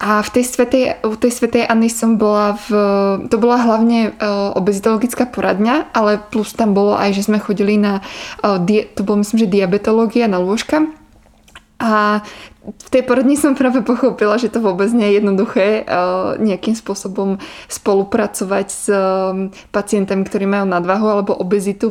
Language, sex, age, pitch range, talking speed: Czech, female, 20-39, 195-230 Hz, 140 wpm